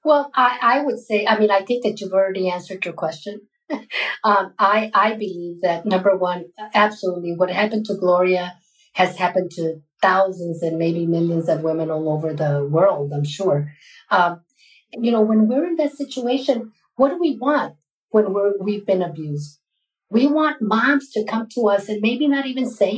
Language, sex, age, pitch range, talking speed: English, female, 50-69, 185-250 Hz, 185 wpm